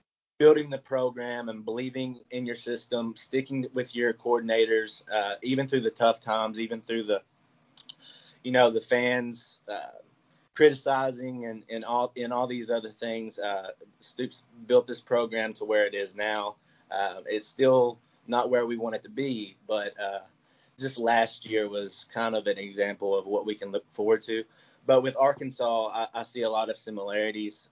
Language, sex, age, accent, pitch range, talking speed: English, male, 30-49, American, 110-130 Hz, 180 wpm